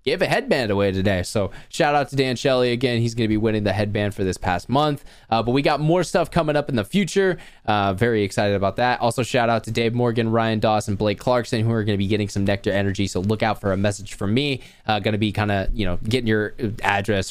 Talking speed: 265 wpm